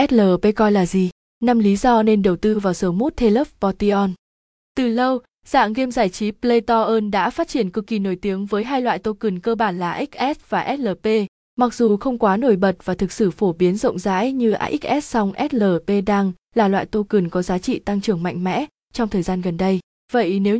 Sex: female